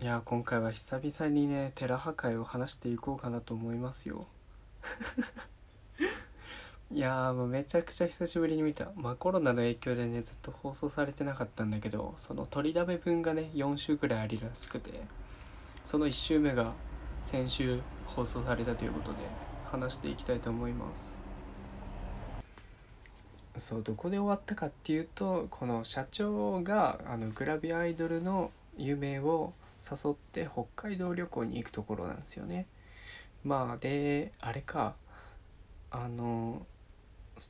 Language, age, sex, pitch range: Japanese, 20-39, male, 110-155 Hz